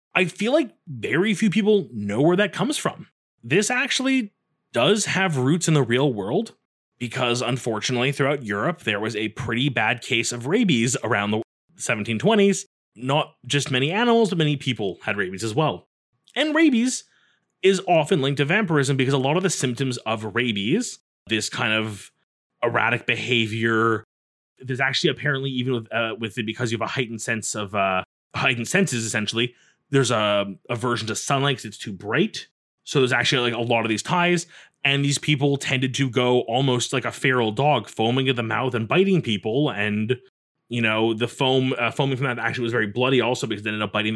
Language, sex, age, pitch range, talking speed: English, male, 30-49, 115-160 Hz, 190 wpm